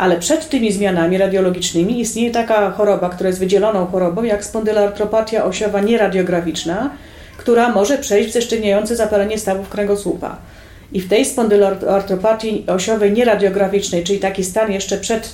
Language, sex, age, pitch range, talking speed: Polish, female, 40-59, 185-220 Hz, 135 wpm